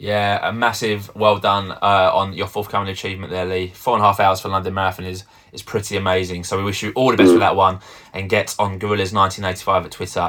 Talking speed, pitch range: 240 wpm, 95-125 Hz